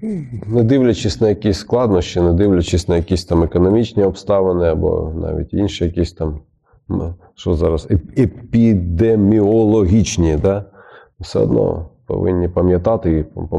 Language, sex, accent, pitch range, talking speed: Ukrainian, male, native, 90-115 Hz, 120 wpm